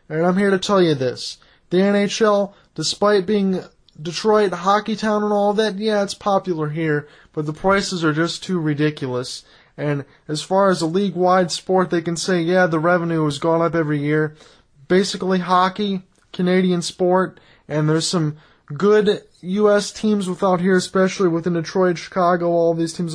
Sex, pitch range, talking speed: male, 155-190 Hz, 170 wpm